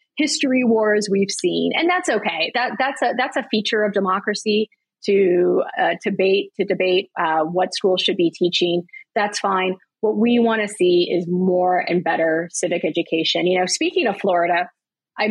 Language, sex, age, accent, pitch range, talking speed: English, female, 30-49, American, 175-210 Hz, 180 wpm